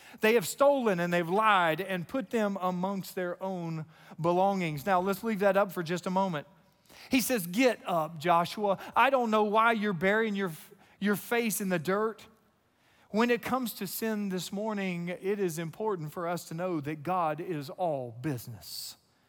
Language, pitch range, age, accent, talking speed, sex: English, 170-215 Hz, 40-59, American, 180 wpm, male